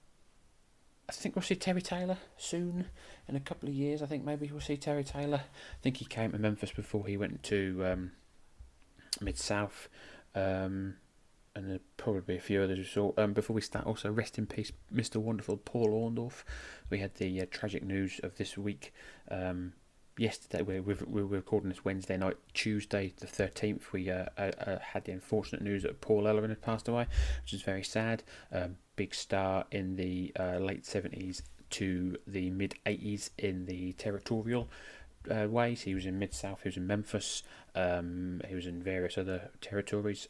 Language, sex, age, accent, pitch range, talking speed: English, male, 30-49, British, 90-110 Hz, 185 wpm